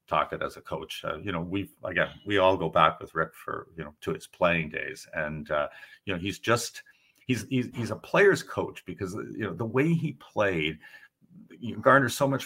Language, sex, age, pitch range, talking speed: English, male, 50-69, 95-150 Hz, 220 wpm